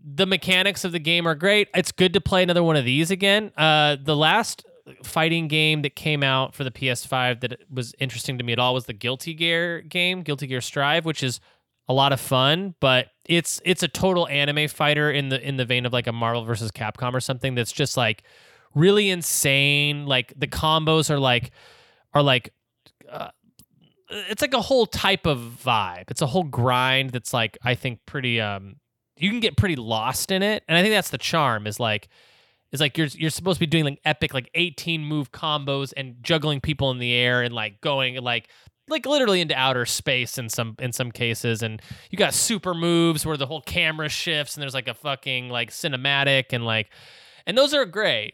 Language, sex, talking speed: English, male, 210 wpm